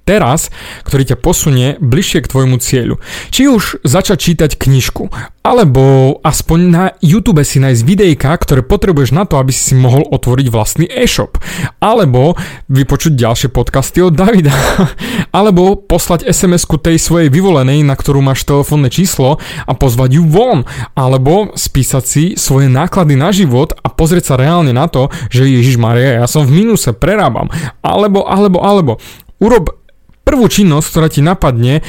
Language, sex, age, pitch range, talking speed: Slovak, male, 30-49, 130-175 Hz, 150 wpm